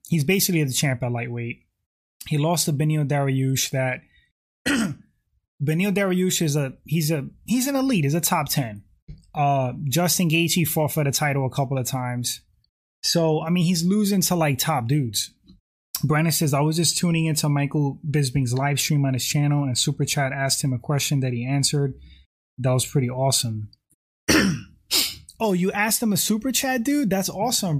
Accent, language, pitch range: American, English, 130-170 Hz